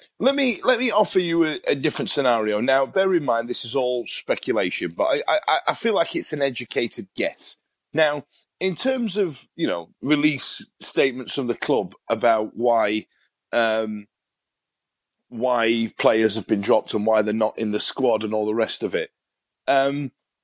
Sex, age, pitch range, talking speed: male, 30-49, 115-165 Hz, 180 wpm